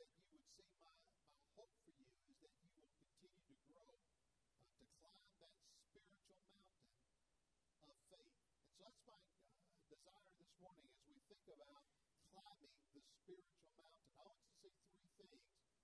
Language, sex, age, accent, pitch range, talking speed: English, male, 50-69, American, 135-195 Hz, 165 wpm